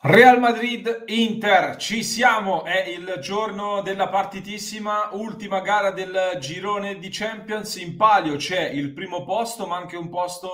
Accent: native